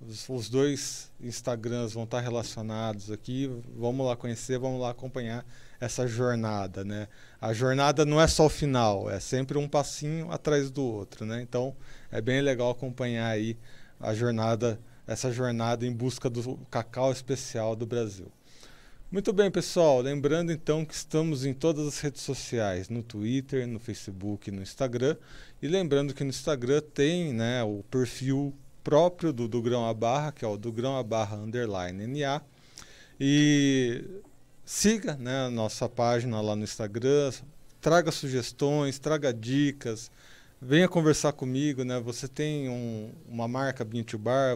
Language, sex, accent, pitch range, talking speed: Portuguese, male, Brazilian, 120-140 Hz, 150 wpm